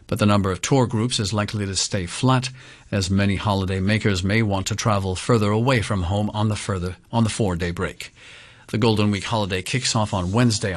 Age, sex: 50-69, male